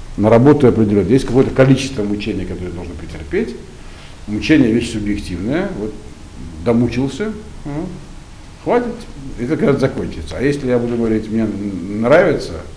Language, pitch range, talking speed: Russian, 90-120 Hz, 135 wpm